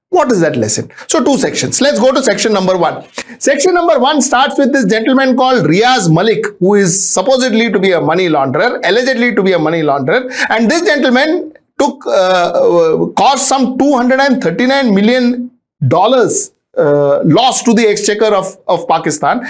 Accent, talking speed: Indian, 165 wpm